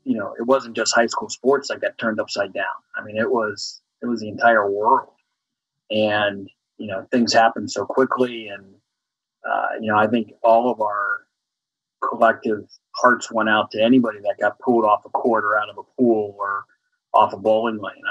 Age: 30-49